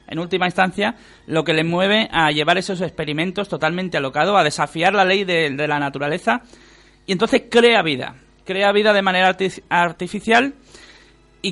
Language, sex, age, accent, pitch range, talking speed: Spanish, male, 40-59, Spanish, 170-225 Hz, 165 wpm